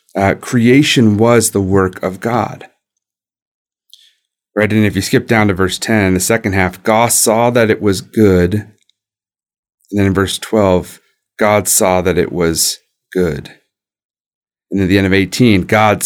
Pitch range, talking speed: 90-110 Hz, 160 wpm